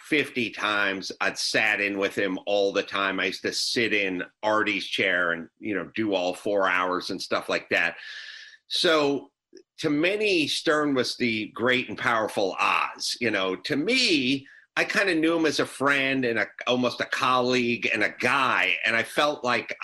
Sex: male